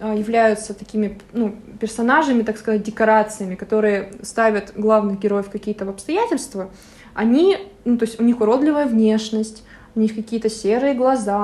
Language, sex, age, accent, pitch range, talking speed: Russian, female, 20-39, native, 215-250 Hz, 140 wpm